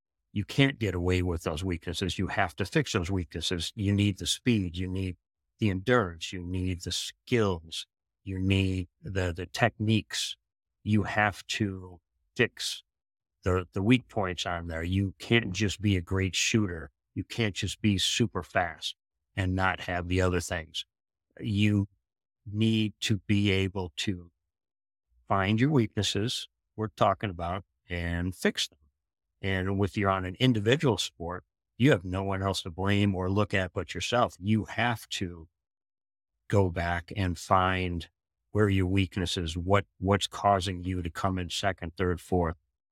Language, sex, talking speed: English, male, 160 wpm